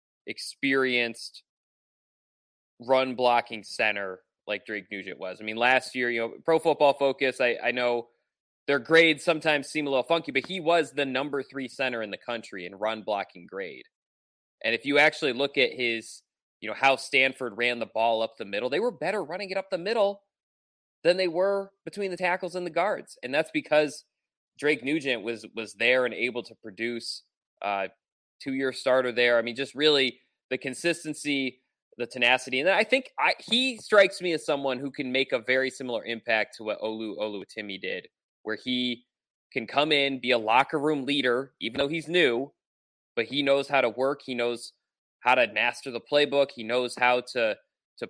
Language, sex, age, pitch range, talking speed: English, male, 20-39, 120-150 Hz, 190 wpm